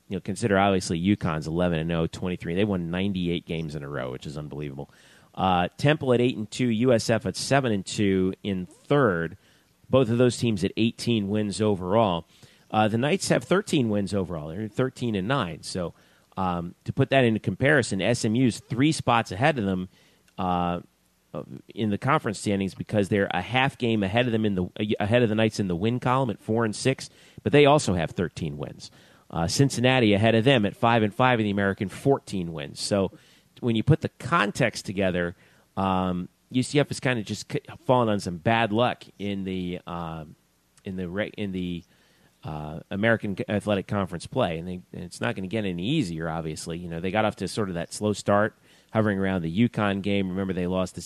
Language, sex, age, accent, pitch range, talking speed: English, male, 40-59, American, 90-115 Hz, 200 wpm